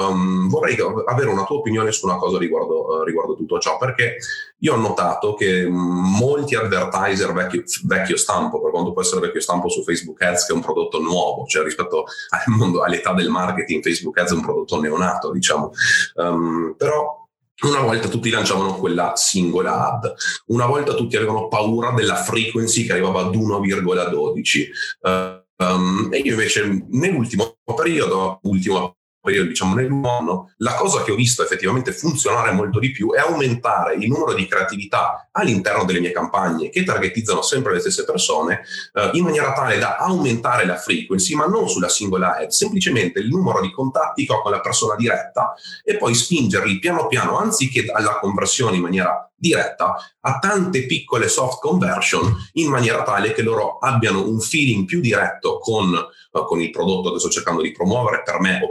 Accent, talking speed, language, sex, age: native, 175 wpm, Italian, male, 30-49